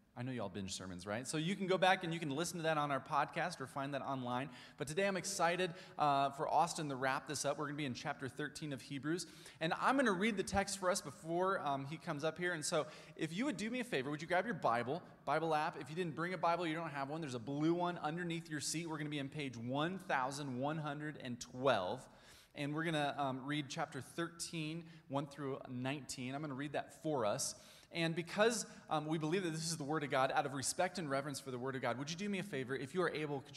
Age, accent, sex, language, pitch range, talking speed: 20-39, American, male, English, 130-170 Hz, 265 wpm